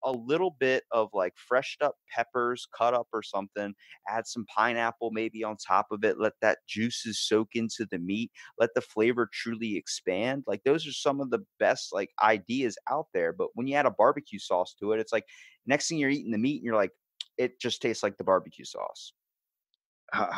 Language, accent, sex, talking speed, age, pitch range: English, American, male, 210 wpm, 30-49, 95-130 Hz